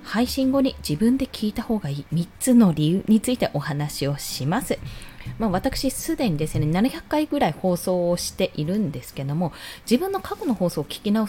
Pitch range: 155-260 Hz